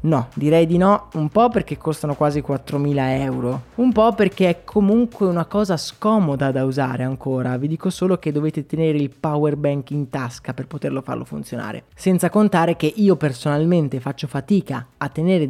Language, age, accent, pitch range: Italian, 20-39, native, 145-195 Hz